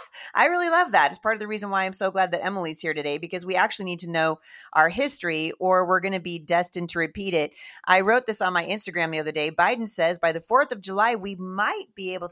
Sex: female